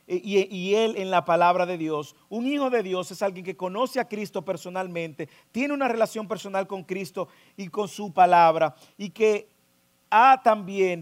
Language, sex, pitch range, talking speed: English, male, 160-230 Hz, 180 wpm